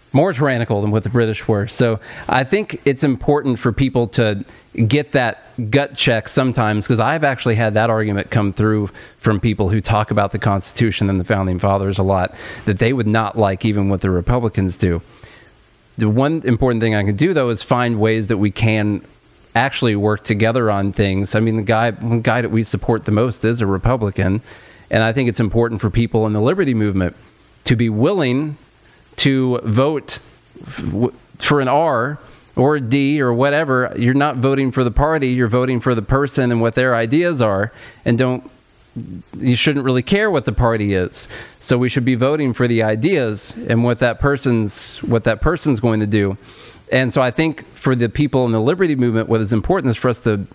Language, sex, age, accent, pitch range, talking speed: English, male, 40-59, American, 110-130 Hz, 200 wpm